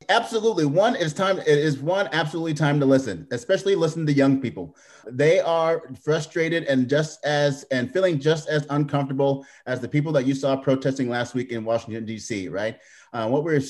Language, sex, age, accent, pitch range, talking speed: English, male, 30-49, American, 120-145 Hz, 190 wpm